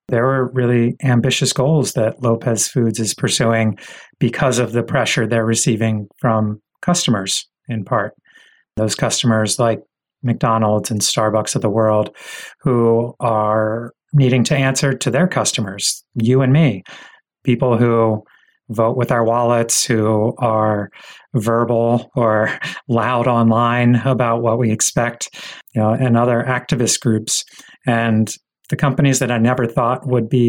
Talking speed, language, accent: 140 wpm, English, American